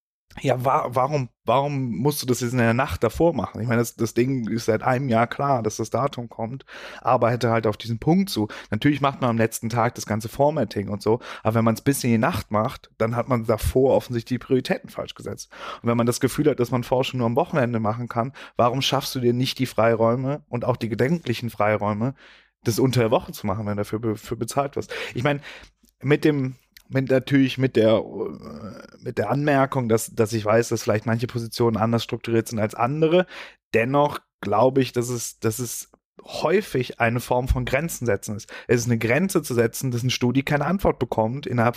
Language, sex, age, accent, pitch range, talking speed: German, male, 30-49, German, 115-130 Hz, 220 wpm